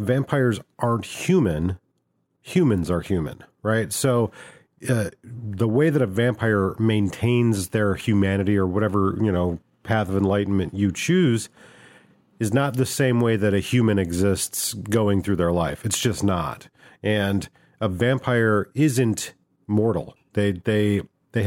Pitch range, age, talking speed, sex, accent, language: 95-120 Hz, 40-59, 140 wpm, male, American, English